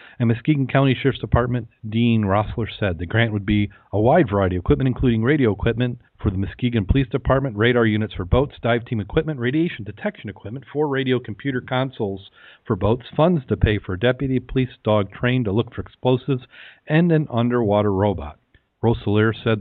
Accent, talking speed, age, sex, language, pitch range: American, 185 wpm, 40-59, male, English, 105-125 Hz